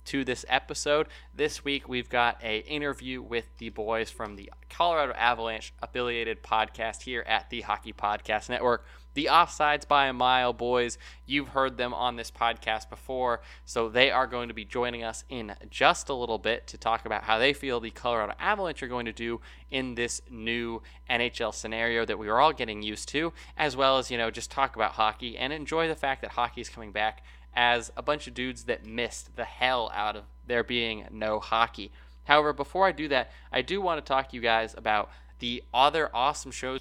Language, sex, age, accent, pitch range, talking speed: English, male, 20-39, American, 110-135 Hz, 205 wpm